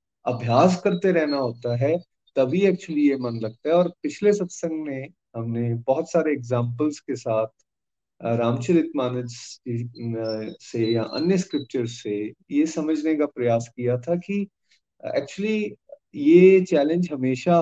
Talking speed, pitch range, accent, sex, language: 125 wpm, 120-180 Hz, native, male, Hindi